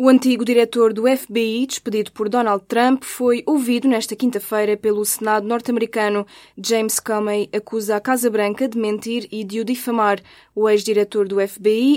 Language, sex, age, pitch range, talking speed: Portuguese, female, 20-39, 205-240 Hz, 160 wpm